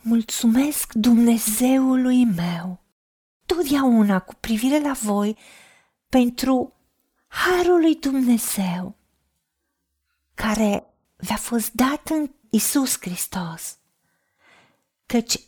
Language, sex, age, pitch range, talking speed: Romanian, female, 40-59, 220-295 Hz, 80 wpm